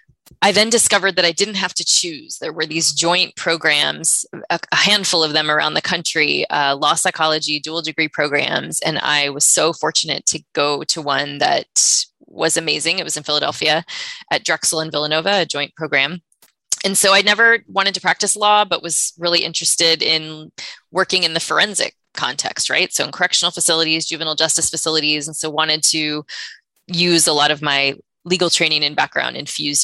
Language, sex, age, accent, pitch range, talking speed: English, female, 20-39, American, 150-175 Hz, 180 wpm